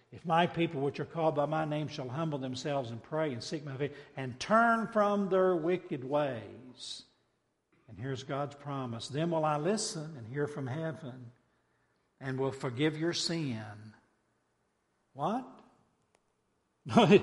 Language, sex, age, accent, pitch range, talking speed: English, male, 60-79, American, 125-160 Hz, 150 wpm